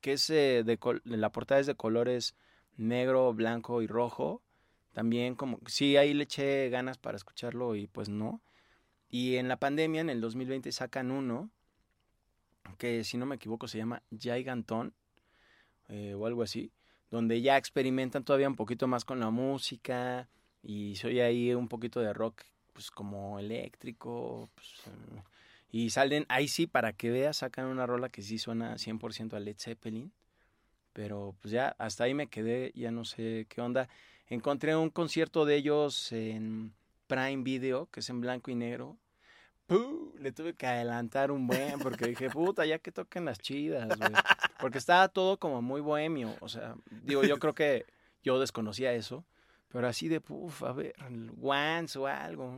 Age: 20-39